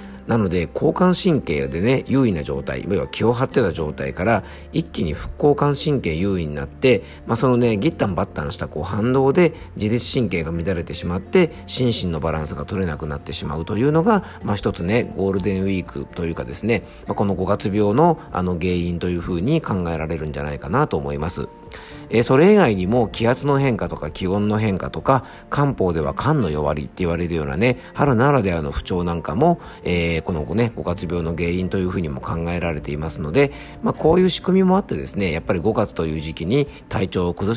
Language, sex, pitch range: Japanese, male, 80-120 Hz